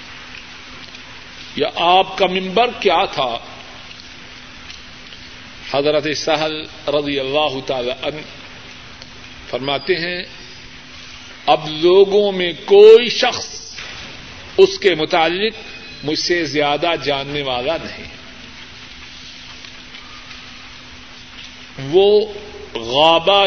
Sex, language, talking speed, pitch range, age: male, Urdu, 75 wpm, 150-200 Hz, 50-69